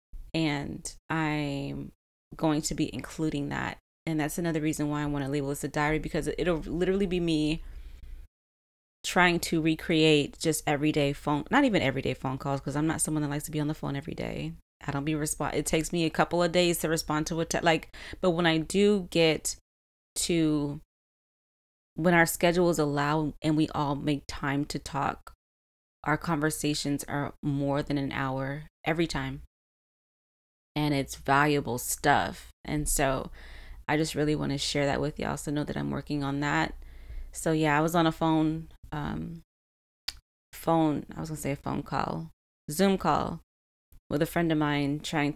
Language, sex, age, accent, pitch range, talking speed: English, female, 20-39, American, 135-160 Hz, 180 wpm